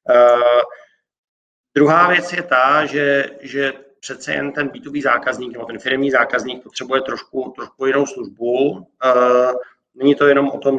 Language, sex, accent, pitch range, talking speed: Czech, male, native, 120-135 Hz, 150 wpm